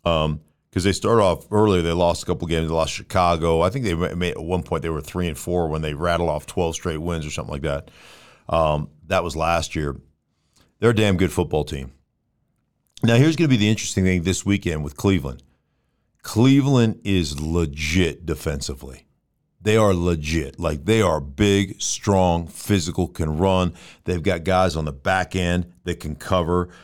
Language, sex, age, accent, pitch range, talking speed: English, male, 50-69, American, 80-100 Hz, 190 wpm